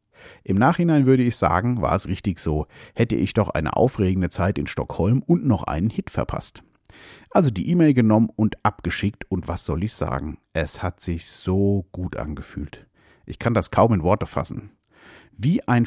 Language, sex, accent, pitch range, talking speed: German, male, German, 90-115 Hz, 180 wpm